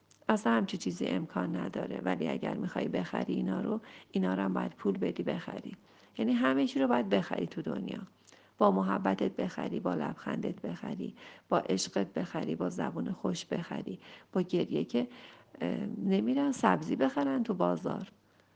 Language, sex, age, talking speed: Persian, female, 50-69, 150 wpm